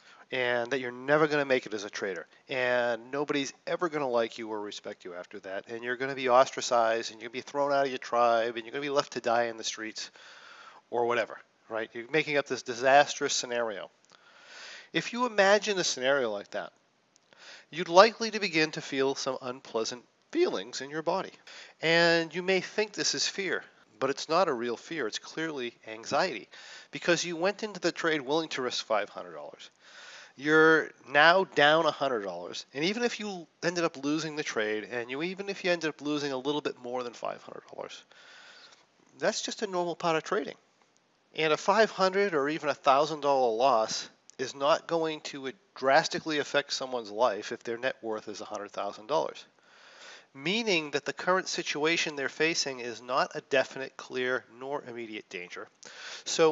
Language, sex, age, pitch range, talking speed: English, male, 40-59, 125-170 Hz, 190 wpm